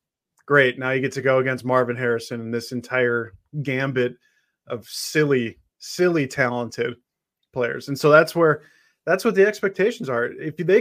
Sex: male